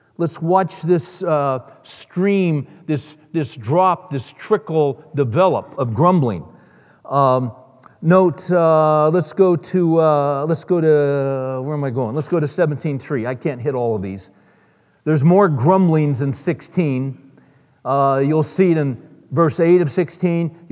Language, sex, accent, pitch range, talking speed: English, male, American, 150-195 Hz, 140 wpm